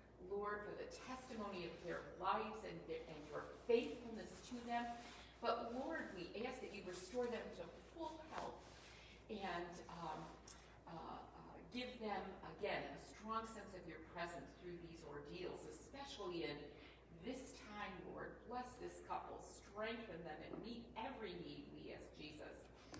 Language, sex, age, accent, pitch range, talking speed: English, female, 40-59, American, 175-245 Hz, 150 wpm